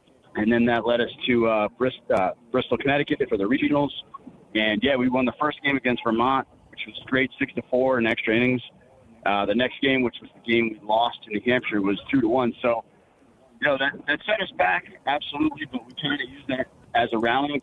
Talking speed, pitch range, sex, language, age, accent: 230 wpm, 115-140 Hz, male, English, 40-59, American